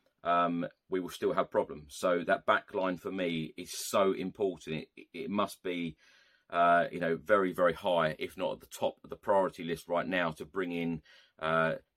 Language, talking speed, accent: English, 200 wpm, British